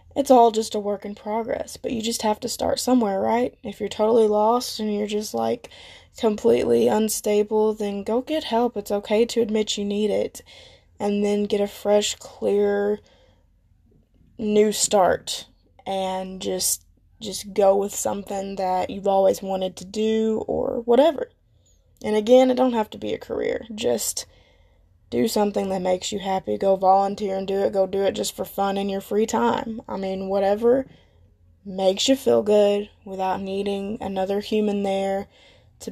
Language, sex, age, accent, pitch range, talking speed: English, female, 10-29, American, 190-215 Hz, 170 wpm